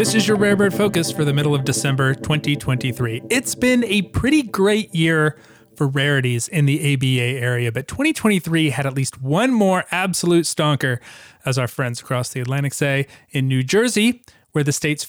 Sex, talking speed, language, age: male, 185 wpm, English, 30-49